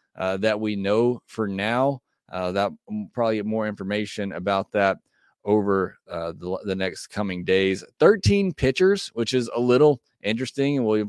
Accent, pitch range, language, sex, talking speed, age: American, 100-125 Hz, English, male, 160 wpm, 30-49